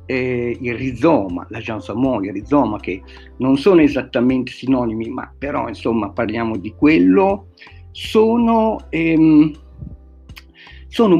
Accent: native